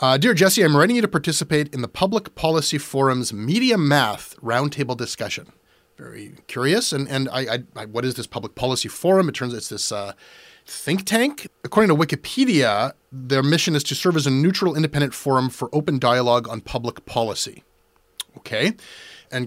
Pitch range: 120-150 Hz